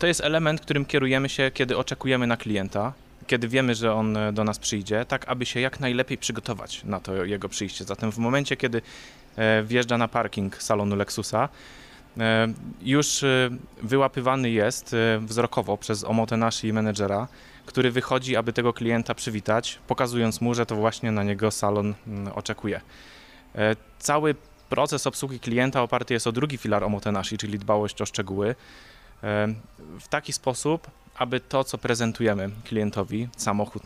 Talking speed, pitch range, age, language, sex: 145 wpm, 105-125 Hz, 20-39, Polish, male